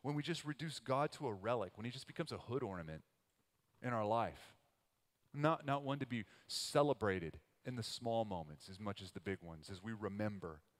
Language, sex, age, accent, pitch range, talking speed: English, male, 30-49, American, 95-125 Hz, 205 wpm